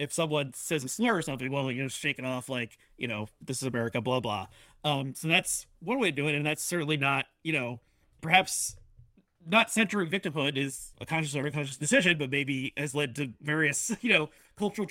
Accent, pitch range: American, 140-175 Hz